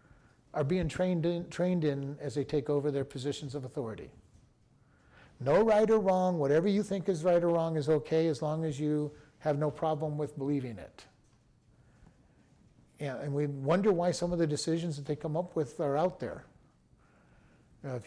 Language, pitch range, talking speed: English, 140-180 Hz, 180 wpm